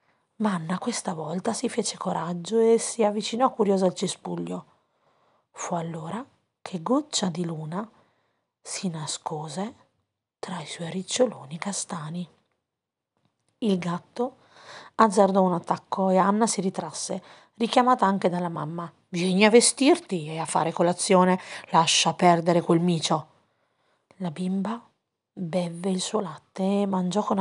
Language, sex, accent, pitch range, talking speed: Italian, female, native, 175-220 Hz, 130 wpm